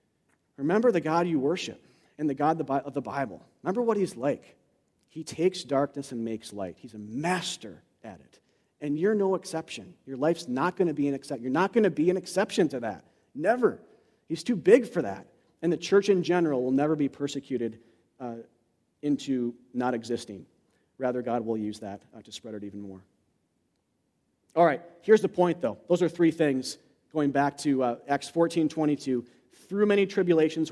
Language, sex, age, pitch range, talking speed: English, male, 40-59, 135-190 Hz, 190 wpm